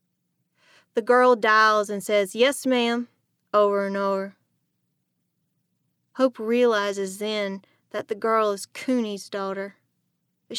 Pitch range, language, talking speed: 195-230 Hz, English, 115 wpm